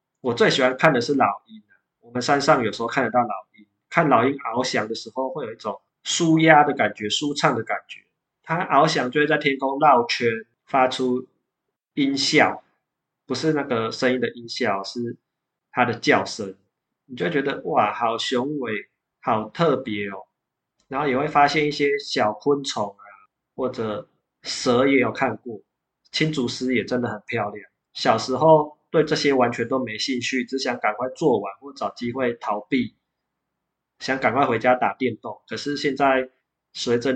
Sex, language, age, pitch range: male, Chinese, 20-39, 120-145 Hz